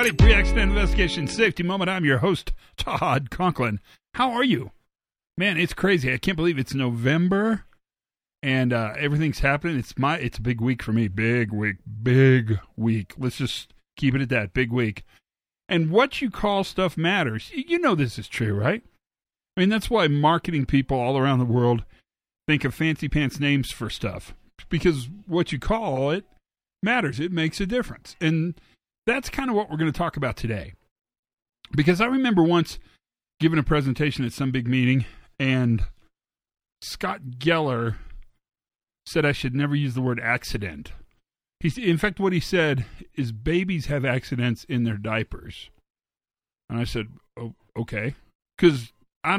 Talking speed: 165 wpm